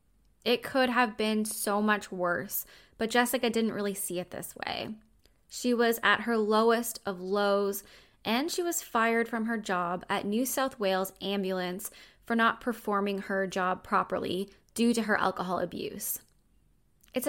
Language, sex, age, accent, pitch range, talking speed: English, female, 10-29, American, 195-240 Hz, 160 wpm